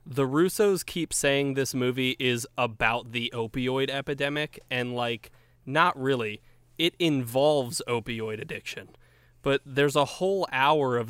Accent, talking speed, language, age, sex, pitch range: American, 135 wpm, English, 20-39, male, 120-135 Hz